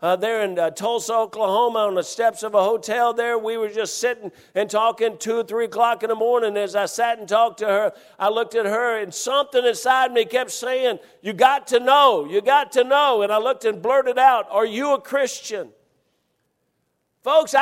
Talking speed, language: 210 wpm, English